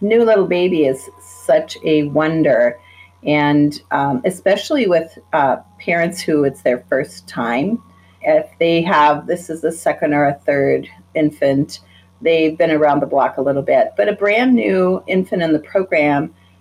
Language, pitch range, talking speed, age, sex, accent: English, 135-175 Hz, 165 wpm, 40-59, female, American